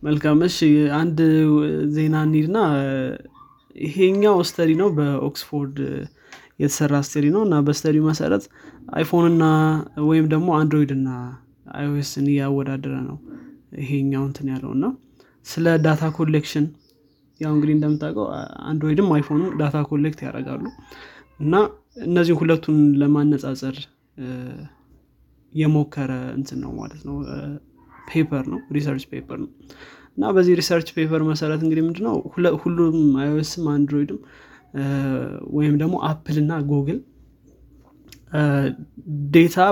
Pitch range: 140-160 Hz